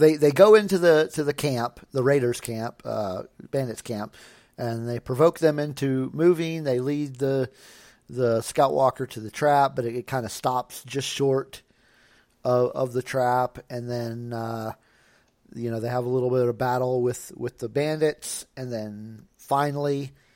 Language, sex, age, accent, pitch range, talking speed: English, male, 40-59, American, 115-135 Hz, 175 wpm